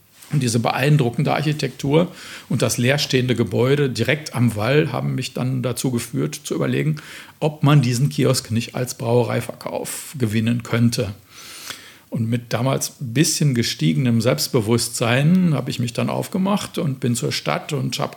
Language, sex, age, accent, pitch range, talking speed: German, male, 50-69, German, 120-145 Hz, 150 wpm